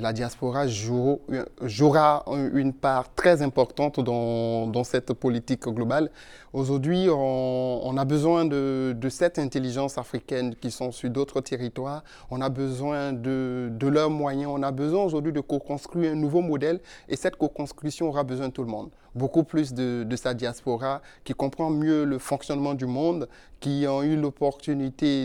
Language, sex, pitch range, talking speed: French, male, 125-145 Hz, 165 wpm